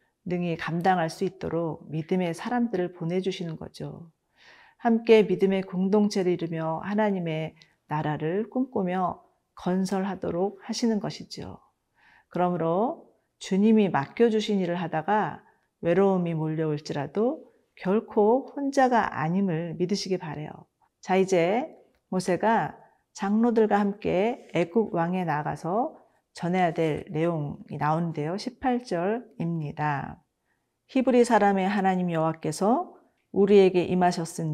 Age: 40-59